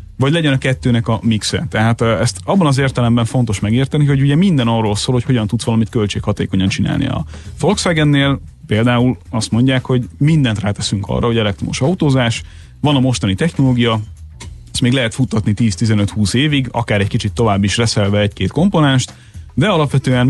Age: 30-49